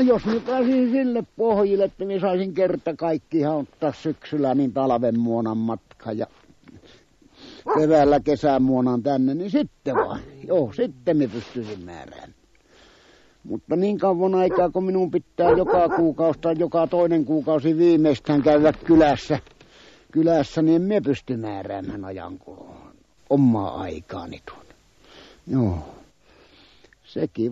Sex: male